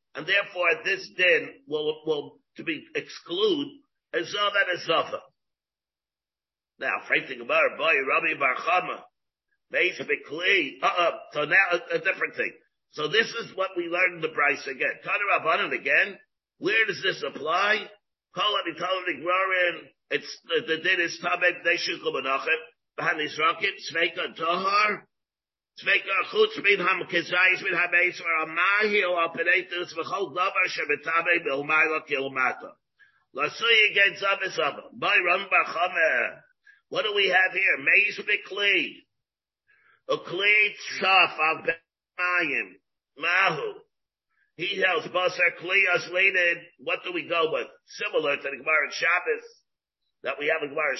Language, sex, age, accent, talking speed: English, male, 50-69, American, 100 wpm